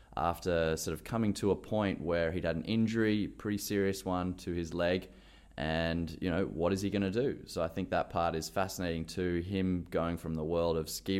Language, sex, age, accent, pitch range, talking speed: English, male, 20-39, Australian, 85-100 Hz, 220 wpm